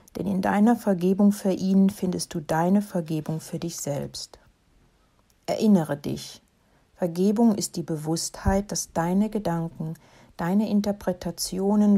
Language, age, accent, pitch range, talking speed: German, 60-79, German, 165-200 Hz, 120 wpm